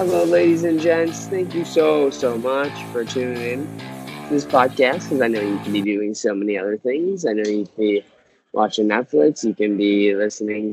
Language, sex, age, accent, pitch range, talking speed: English, male, 20-39, American, 105-135 Hz, 205 wpm